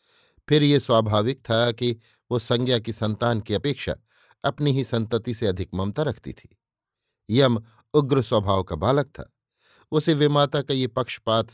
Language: Hindi